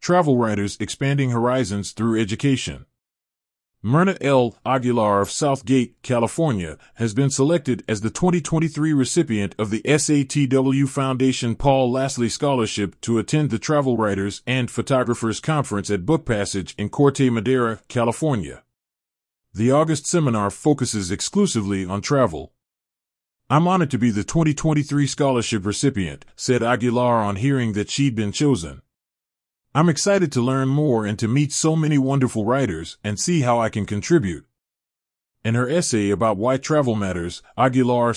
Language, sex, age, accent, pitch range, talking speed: English, male, 30-49, American, 105-140 Hz, 140 wpm